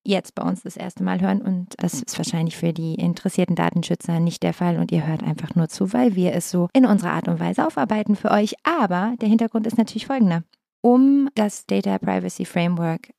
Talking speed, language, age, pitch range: 215 wpm, German, 30-49, 175-230 Hz